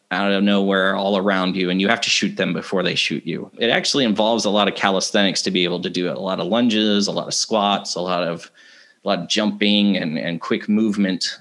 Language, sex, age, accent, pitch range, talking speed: English, male, 30-49, American, 90-105 Hz, 255 wpm